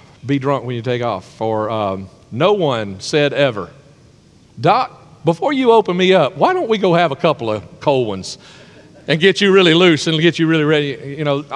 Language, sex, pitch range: English, male, 140-195 Hz